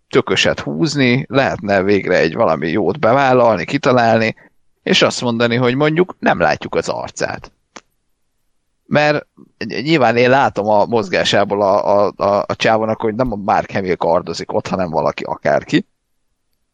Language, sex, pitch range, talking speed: Hungarian, male, 105-125 Hz, 140 wpm